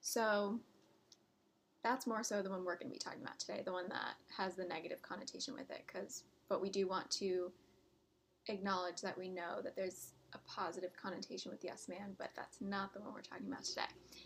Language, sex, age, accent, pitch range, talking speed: English, female, 10-29, American, 195-230 Hz, 205 wpm